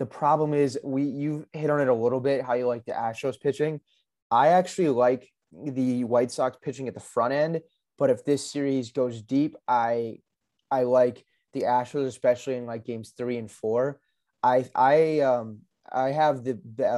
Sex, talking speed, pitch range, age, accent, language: male, 190 wpm, 115-135 Hz, 20-39, American, English